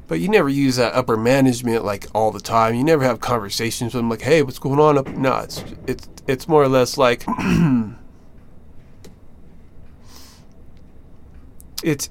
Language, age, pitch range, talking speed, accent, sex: English, 20-39, 105-135 Hz, 155 wpm, American, male